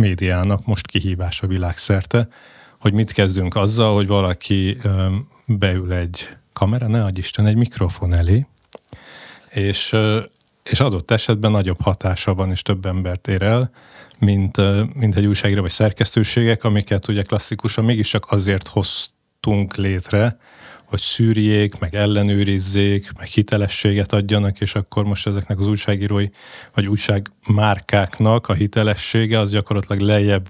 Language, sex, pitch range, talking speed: Hungarian, male, 100-115 Hz, 130 wpm